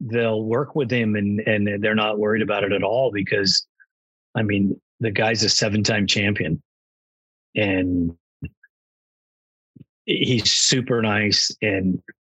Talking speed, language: 130 wpm, English